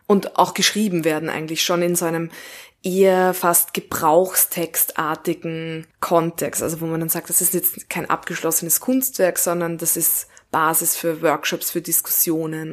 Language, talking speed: German, 150 wpm